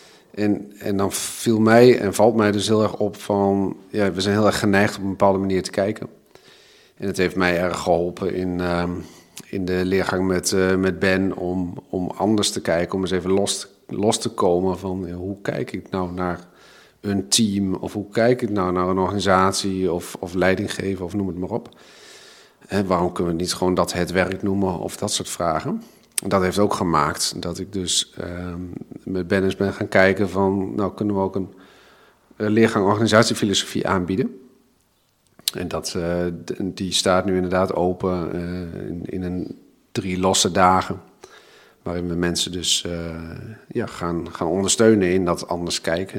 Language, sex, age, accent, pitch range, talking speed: Dutch, male, 40-59, Dutch, 90-100 Hz, 185 wpm